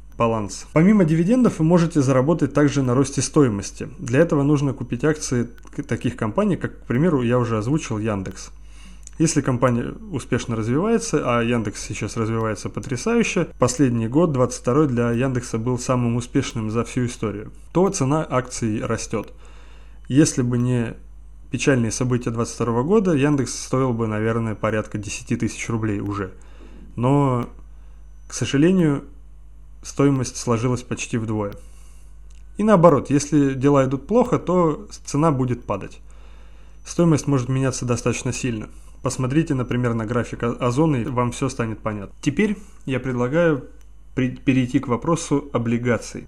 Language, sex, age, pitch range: Russian, male, 20-39, 110-145 Hz